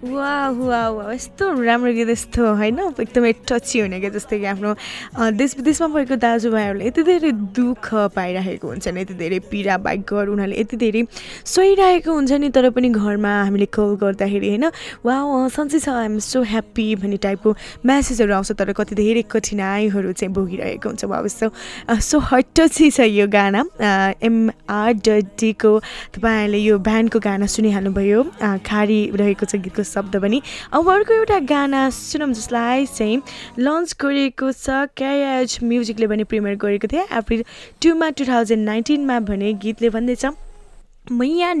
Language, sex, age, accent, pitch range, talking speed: English, female, 10-29, Indian, 210-265 Hz, 40 wpm